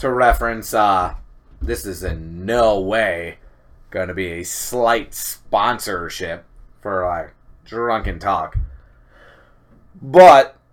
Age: 30-49